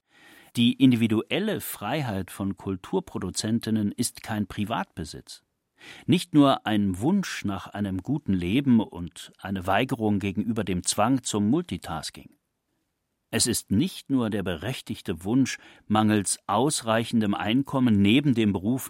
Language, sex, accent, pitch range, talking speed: German, male, German, 100-130 Hz, 115 wpm